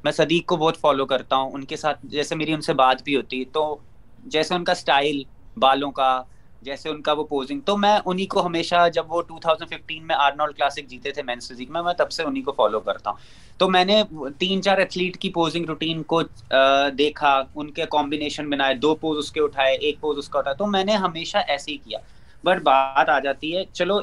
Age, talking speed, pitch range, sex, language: 30-49, 215 wpm, 135-170 Hz, male, Urdu